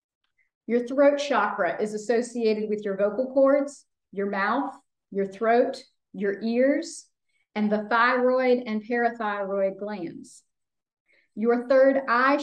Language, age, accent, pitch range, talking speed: English, 40-59, American, 205-275 Hz, 115 wpm